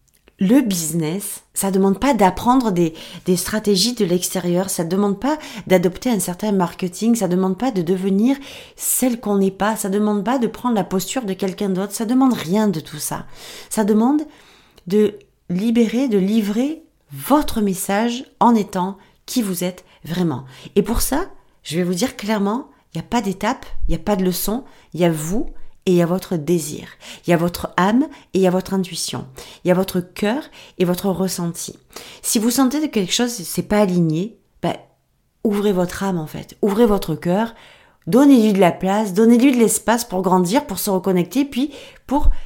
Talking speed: 200 wpm